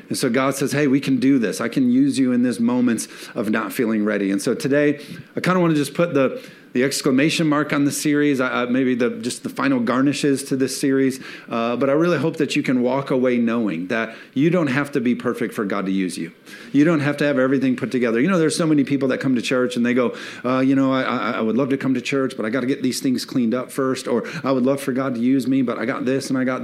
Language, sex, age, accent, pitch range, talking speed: English, male, 40-59, American, 120-145 Hz, 290 wpm